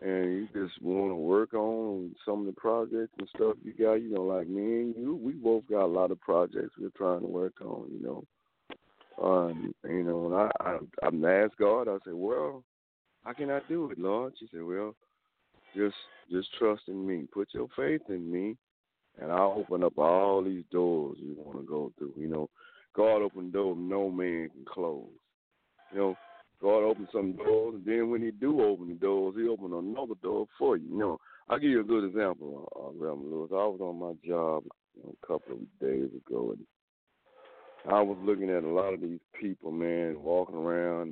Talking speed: 210 wpm